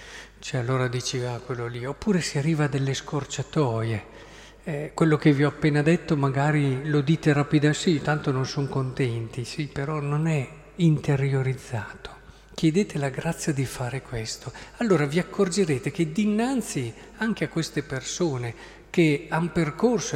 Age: 50-69